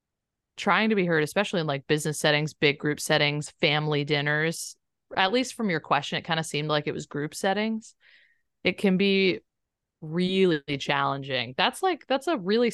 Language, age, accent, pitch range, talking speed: English, 30-49, American, 140-175 Hz, 180 wpm